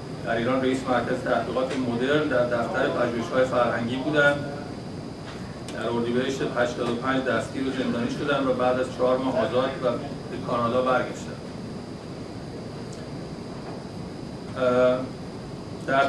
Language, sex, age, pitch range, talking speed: Persian, male, 50-69, 125-140 Hz, 110 wpm